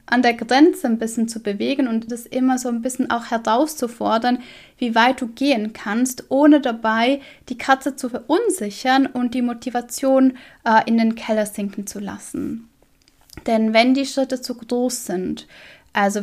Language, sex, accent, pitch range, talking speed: German, female, German, 220-265 Hz, 165 wpm